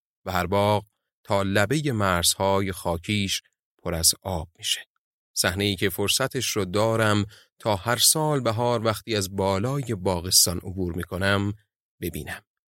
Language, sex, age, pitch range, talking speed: Persian, male, 30-49, 90-110 Hz, 130 wpm